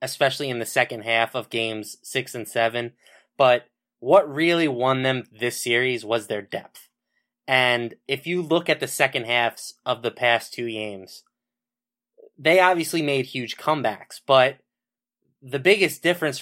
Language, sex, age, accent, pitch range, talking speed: English, male, 20-39, American, 120-140 Hz, 155 wpm